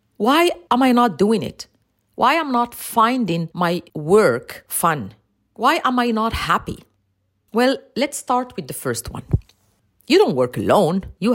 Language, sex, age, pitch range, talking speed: English, female, 40-59, 170-275 Hz, 165 wpm